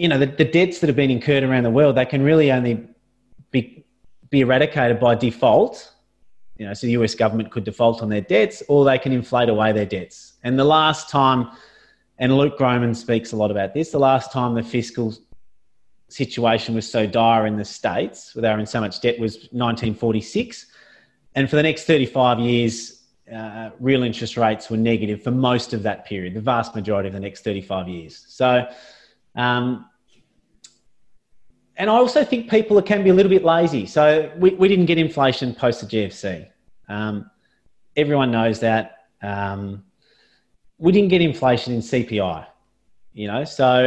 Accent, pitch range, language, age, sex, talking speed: Australian, 110-140 Hz, English, 30-49, male, 180 wpm